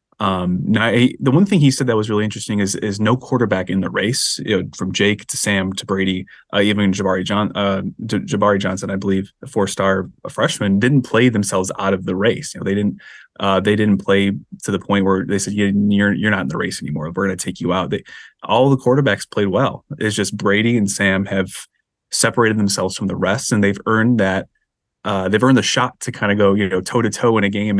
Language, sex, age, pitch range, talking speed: English, male, 20-39, 95-115 Hz, 245 wpm